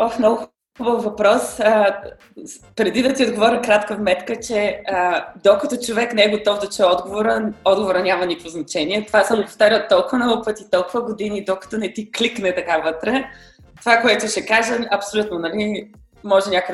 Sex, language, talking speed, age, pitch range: female, Bulgarian, 170 wpm, 20-39, 185-235 Hz